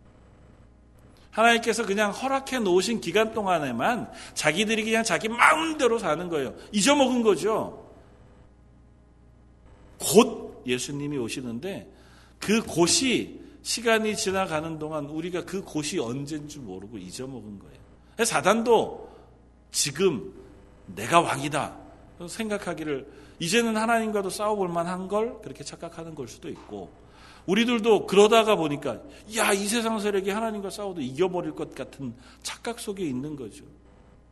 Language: Korean